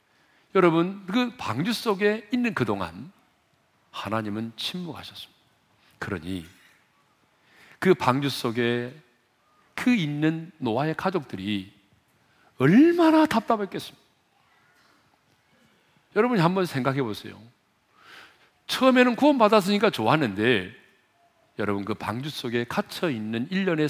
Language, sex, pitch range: Korean, male, 105-170 Hz